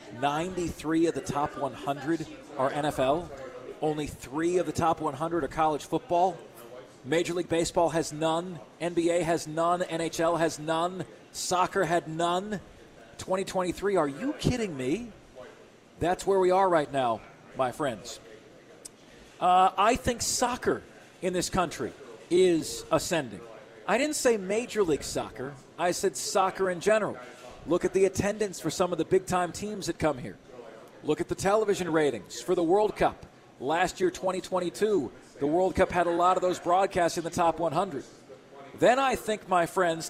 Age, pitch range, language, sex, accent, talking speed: 40-59, 150-185 Hz, English, male, American, 160 wpm